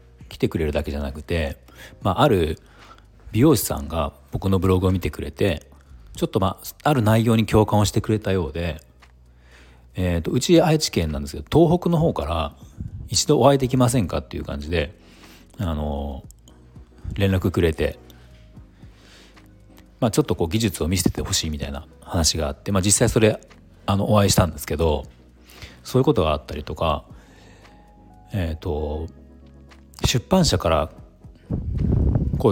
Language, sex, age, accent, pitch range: Japanese, male, 40-59, native, 75-110 Hz